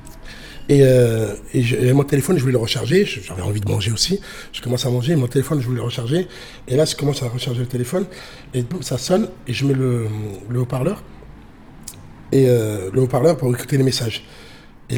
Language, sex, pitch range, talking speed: French, male, 120-165 Hz, 215 wpm